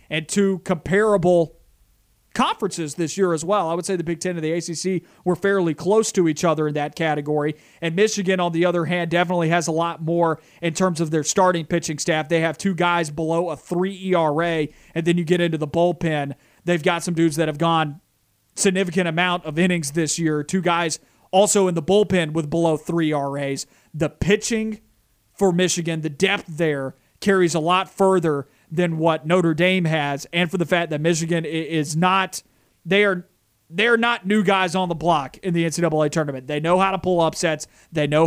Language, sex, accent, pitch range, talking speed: English, male, American, 155-185 Hz, 200 wpm